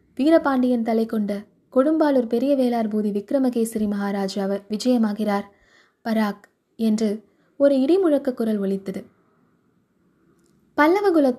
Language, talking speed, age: Tamil, 75 wpm, 20-39